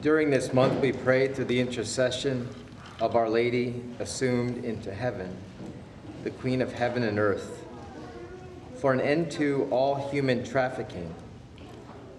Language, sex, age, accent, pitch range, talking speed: English, male, 40-59, American, 115-130 Hz, 135 wpm